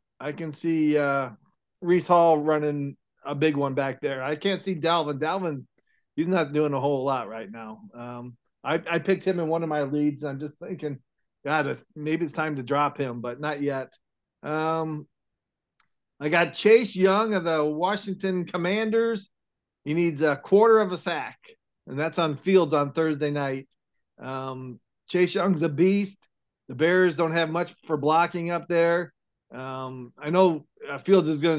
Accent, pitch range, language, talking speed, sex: American, 140-180 Hz, English, 175 wpm, male